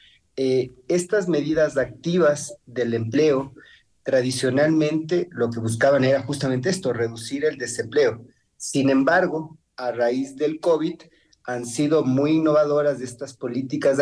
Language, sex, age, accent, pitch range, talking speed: Spanish, male, 40-59, Mexican, 120-150 Hz, 125 wpm